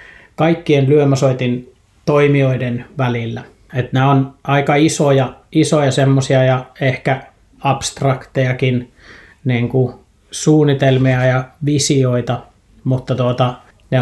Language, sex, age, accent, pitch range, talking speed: Finnish, male, 30-49, native, 125-135 Hz, 85 wpm